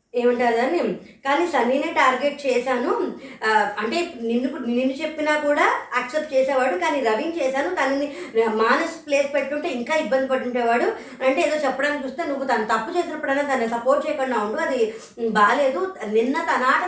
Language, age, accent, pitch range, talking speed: Telugu, 20-39, native, 245-300 Hz, 140 wpm